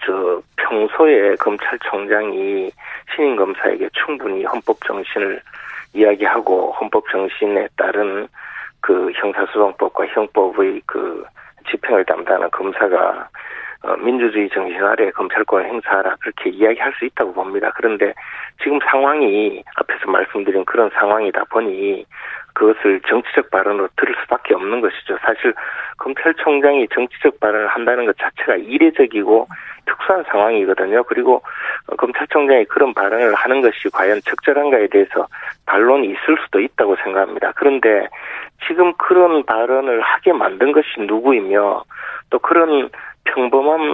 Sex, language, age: male, Korean, 40-59